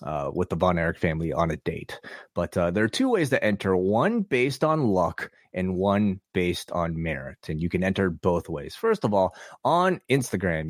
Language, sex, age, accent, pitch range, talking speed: English, male, 30-49, American, 90-125 Hz, 210 wpm